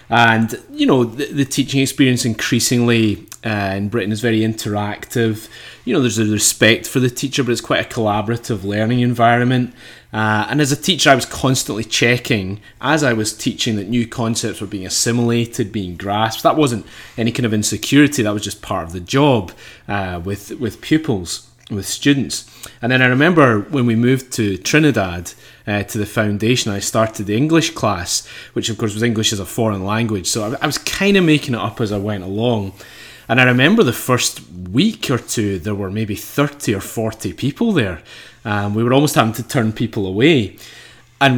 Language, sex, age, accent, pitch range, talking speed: English, male, 30-49, British, 105-130 Hz, 195 wpm